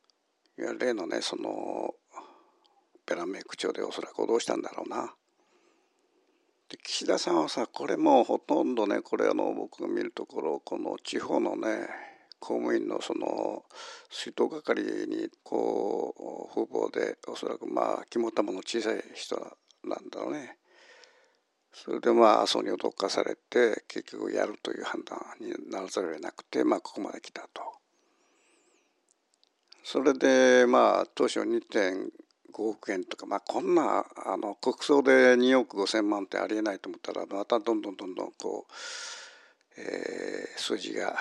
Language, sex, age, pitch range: Japanese, male, 60-79, 340-450 Hz